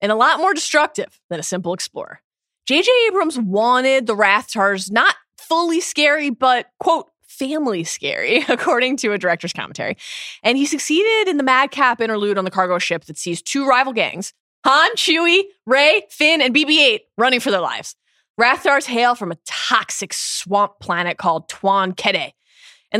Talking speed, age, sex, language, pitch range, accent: 170 wpm, 20-39, female, English, 180-275 Hz, American